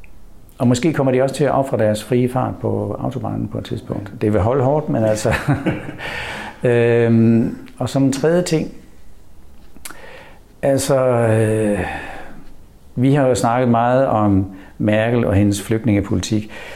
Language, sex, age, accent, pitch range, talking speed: Danish, male, 60-79, native, 100-125 Hz, 145 wpm